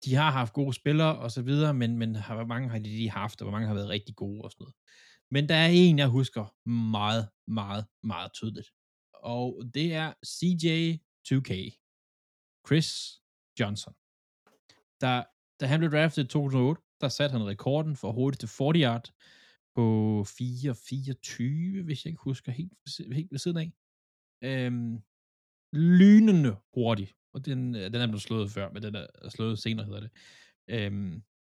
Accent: native